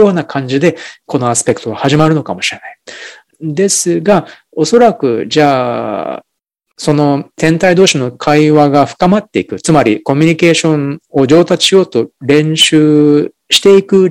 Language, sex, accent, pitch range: Japanese, male, native, 130-180 Hz